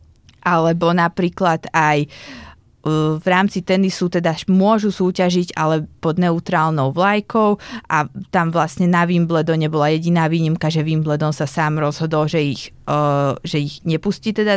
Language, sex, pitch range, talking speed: Slovak, female, 155-180 Hz, 130 wpm